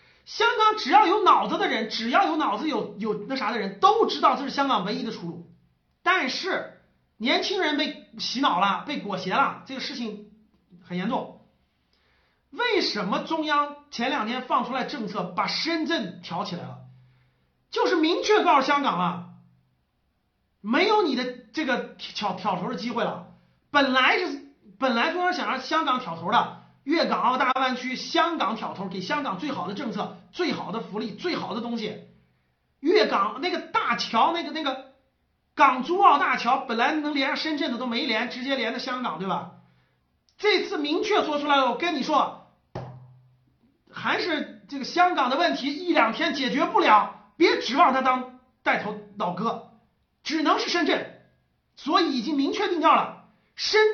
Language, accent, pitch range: Chinese, native, 215-325 Hz